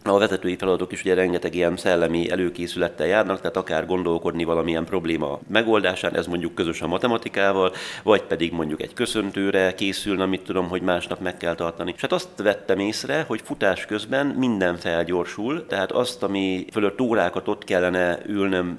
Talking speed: 165 wpm